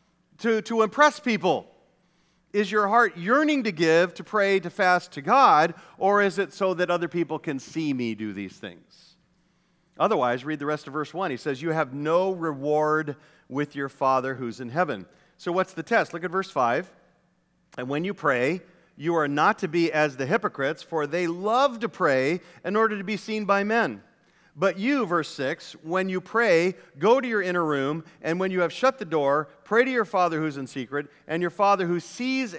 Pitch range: 140-195 Hz